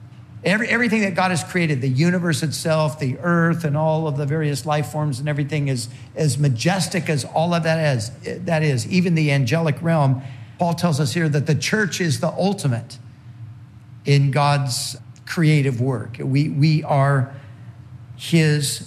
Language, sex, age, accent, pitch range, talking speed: English, male, 50-69, American, 125-160 Hz, 160 wpm